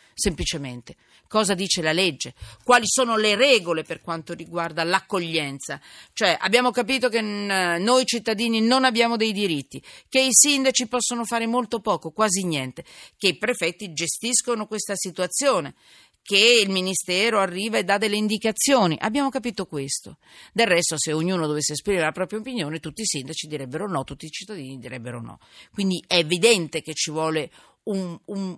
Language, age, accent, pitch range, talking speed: Italian, 40-59, native, 160-225 Hz, 160 wpm